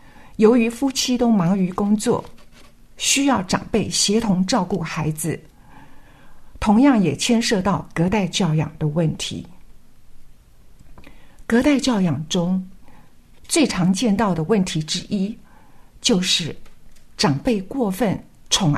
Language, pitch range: Chinese, 175-235 Hz